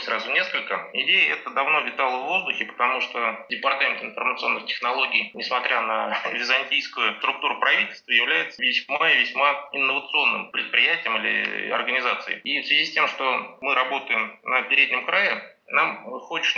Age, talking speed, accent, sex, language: 20-39, 140 wpm, native, male, Russian